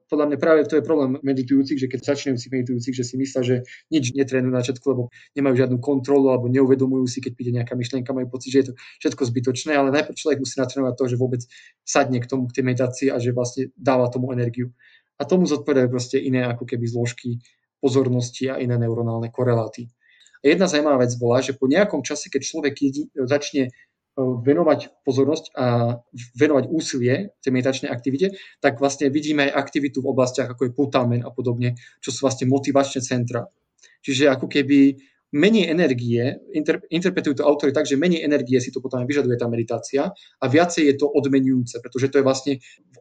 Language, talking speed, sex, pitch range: Slovak, 195 wpm, male, 125-145 Hz